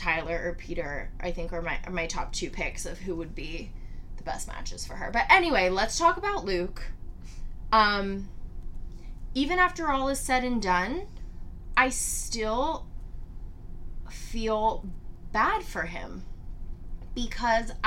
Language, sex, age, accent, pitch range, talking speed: English, female, 20-39, American, 175-230 Hz, 140 wpm